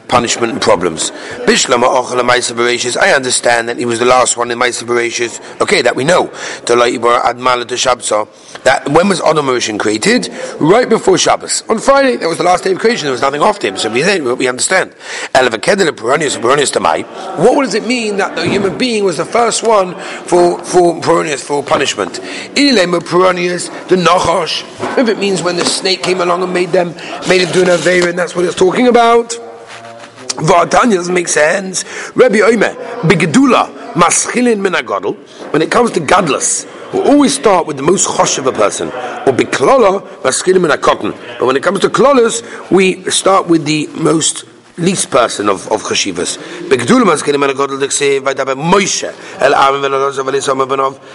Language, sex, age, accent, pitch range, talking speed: English, male, 40-59, British, 135-195 Hz, 160 wpm